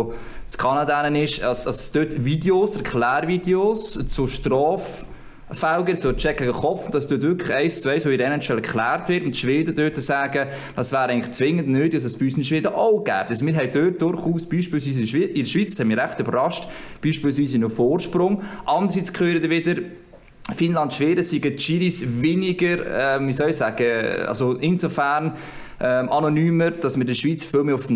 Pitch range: 130-165 Hz